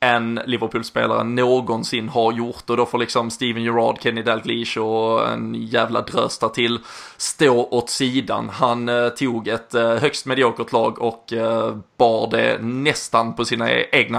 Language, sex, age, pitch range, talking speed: Swedish, male, 20-39, 115-135 Hz, 155 wpm